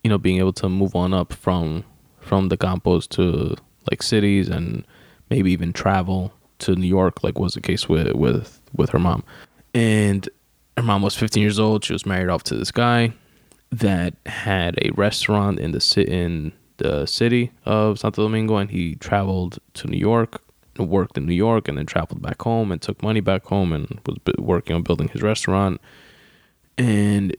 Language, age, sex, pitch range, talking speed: English, 20-39, male, 90-105 Hz, 190 wpm